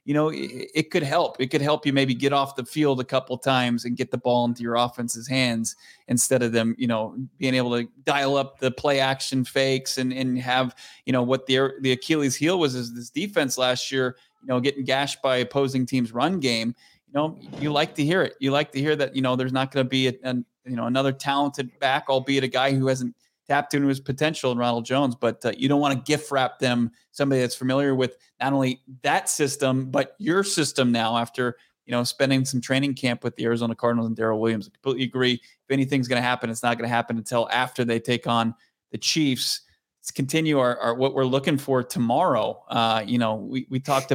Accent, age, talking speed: American, 30-49, 235 wpm